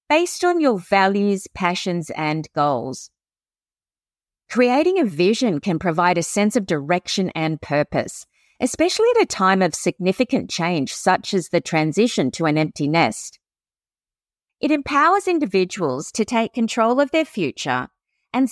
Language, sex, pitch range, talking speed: English, female, 175-270 Hz, 140 wpm